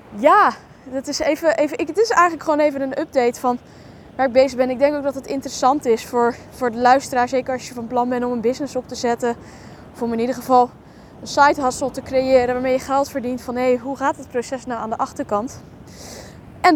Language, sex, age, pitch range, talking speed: Dutch, female, 10-29, 250-285 Hz, 235 wpm